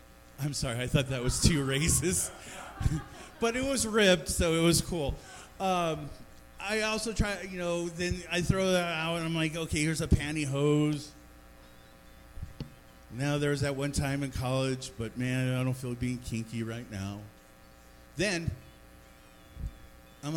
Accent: American